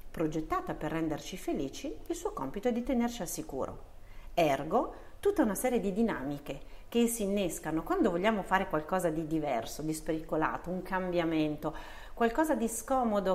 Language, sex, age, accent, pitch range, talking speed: English, female, 40-59, Italian, 155-215 Hz, 155 wpm